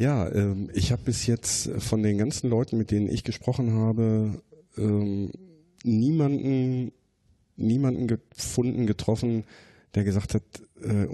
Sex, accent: male, German